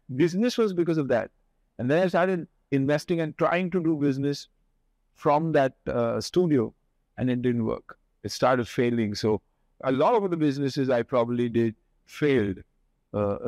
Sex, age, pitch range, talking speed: male, 50-69, 115-140 Hz, 165 wpm